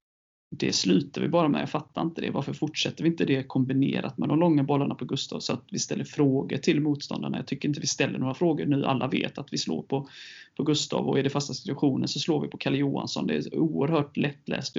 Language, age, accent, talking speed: Swedish, 30-49, native, 235 wpm